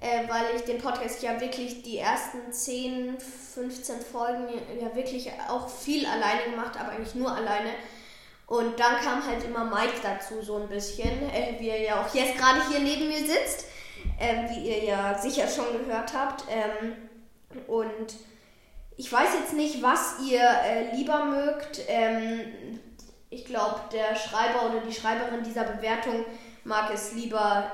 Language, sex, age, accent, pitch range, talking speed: German, female, 20-39, German, 220-250 Hz, 165 wpm